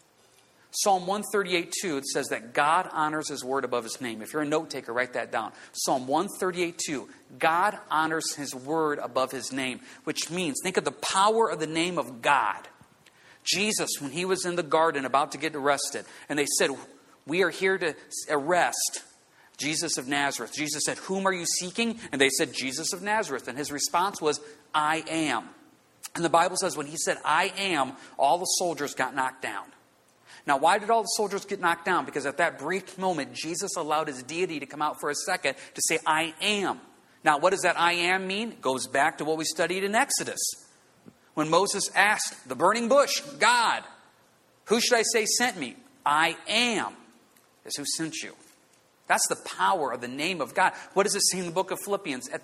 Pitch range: 145-190 Hz